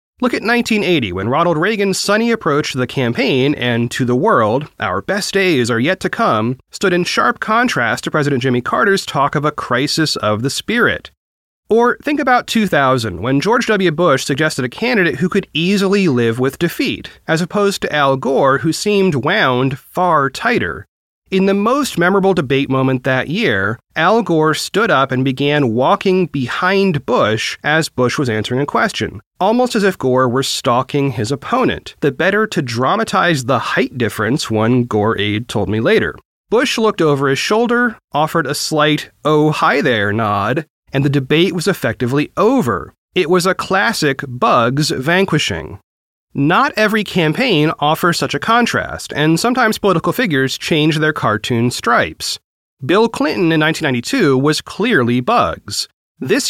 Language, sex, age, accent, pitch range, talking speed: English, male, 30-49, American, 130-190 Hz, 165 wpm